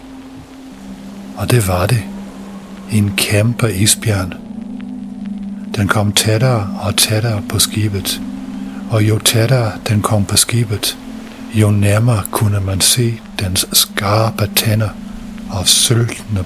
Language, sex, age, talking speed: English, male, 60-79, 115 wpm